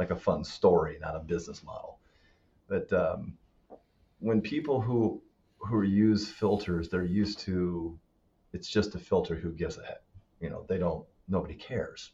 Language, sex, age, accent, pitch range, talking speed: English, male, 40-59, American, 90-105 Hz, 165 wpm